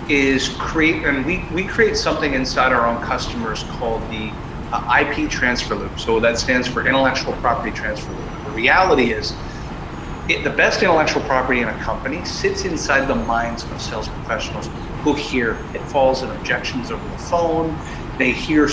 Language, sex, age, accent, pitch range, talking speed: English, male, 40-59, American, 120-155 Hz, 165 wpm